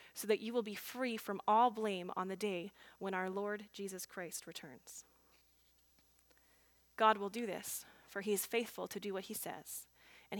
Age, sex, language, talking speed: 30-49, female, English, 185 wpm